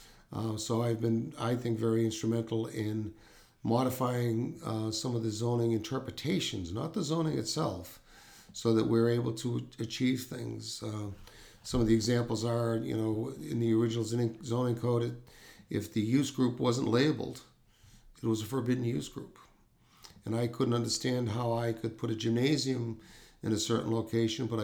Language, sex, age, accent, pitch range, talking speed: English, male, 50-69, American, 110-120 Hz, 165 wpm